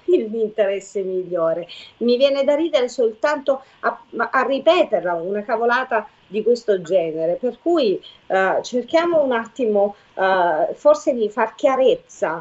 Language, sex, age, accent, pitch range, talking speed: Italian, female, 40-59, native, 195-265 Hz, 135 wpm